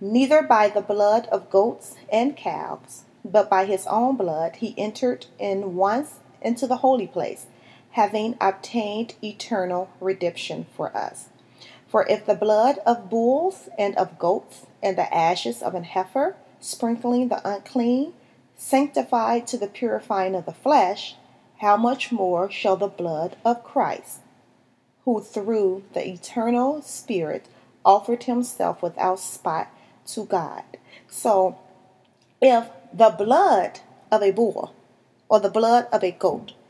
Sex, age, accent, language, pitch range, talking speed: female, 40-59, American, English, 190-245 Hz, 135 wpm